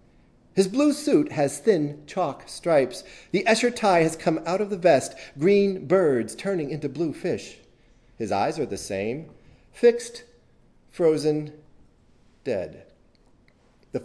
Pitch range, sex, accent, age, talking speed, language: 115-190 Hz, male, American, 40-59, 130 wpm, English